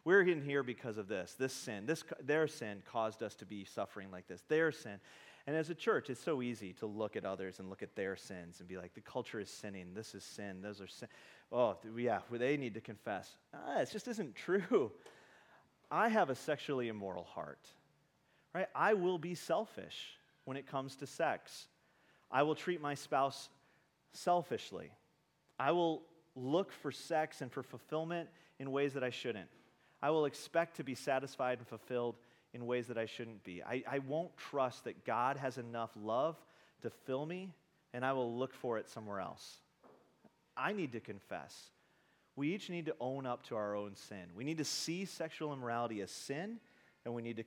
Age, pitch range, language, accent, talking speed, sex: 30-49, 110-155 Hz, English, American, 195 wpm, male